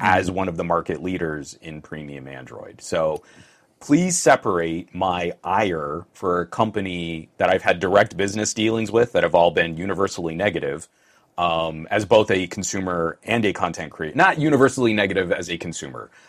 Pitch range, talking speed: 80-110 Hz, 165 wpm